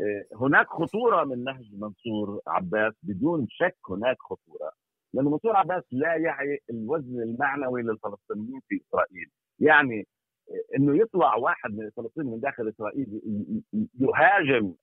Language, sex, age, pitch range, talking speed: Arabic, male, 50-69, 110-160 Hz, 125 wpm